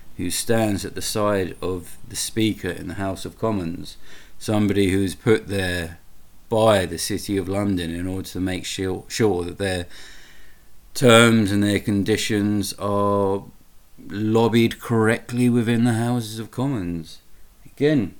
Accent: British